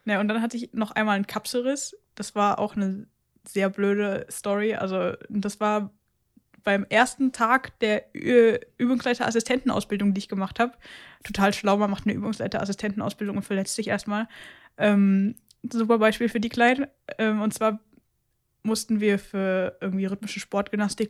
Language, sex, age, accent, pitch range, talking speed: German, female, 10-29, German, 200-230 Hz, 155 wpm